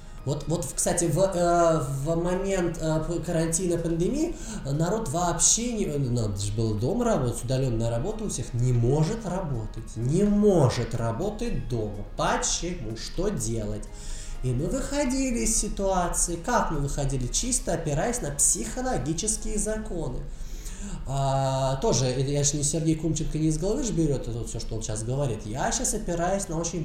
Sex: male